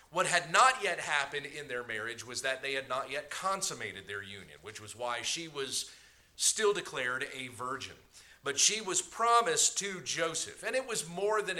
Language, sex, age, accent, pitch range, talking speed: English, male, 40-59, American, 120-175 Hz, 190 wpm